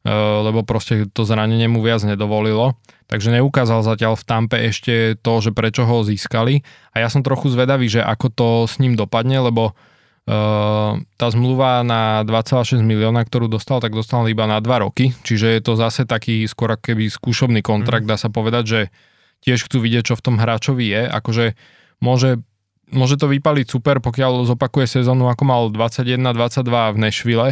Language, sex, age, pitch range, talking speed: Slovak, male, 20-39, 110-120 Hz, 170 wpm